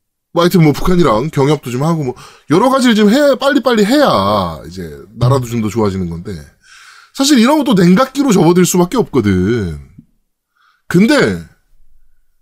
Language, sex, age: Korean, male, 20-39